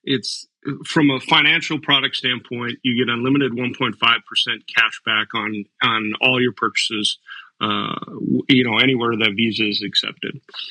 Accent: American